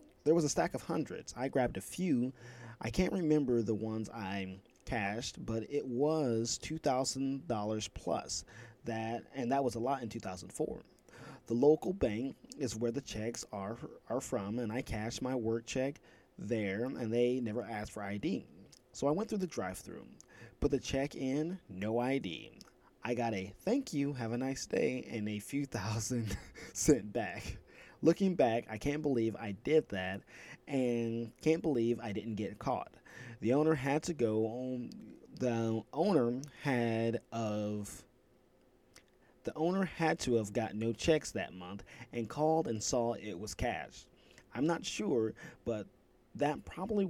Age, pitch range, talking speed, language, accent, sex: 20-39, 110-140 Hz, 165 wpm, English, American, male